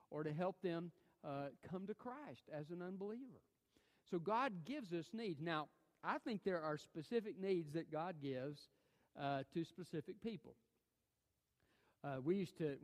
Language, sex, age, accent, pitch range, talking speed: English, male, 50-69, American, 135-175 Hz, 160 wpm